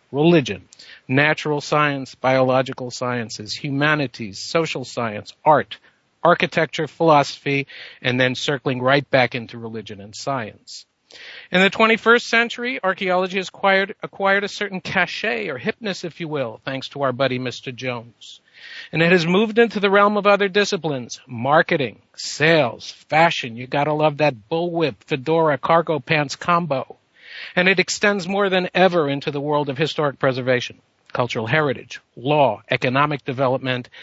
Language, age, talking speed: English, 50-69, 145 wpm